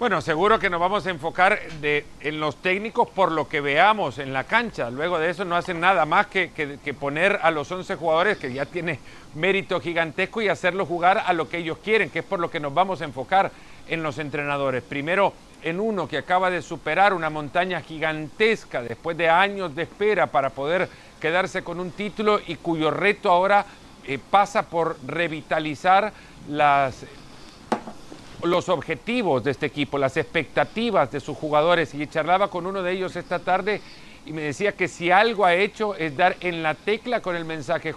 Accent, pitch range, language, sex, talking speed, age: Mexican, 160-195 Hz, Spanish, male, 195 wpm, 50-69